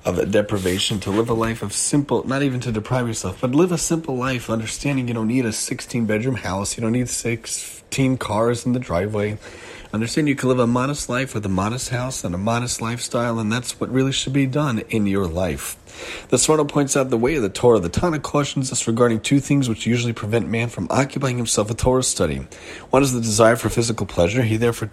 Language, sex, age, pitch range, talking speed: English, male, 30-49, 105-130 Hz, 225 wpm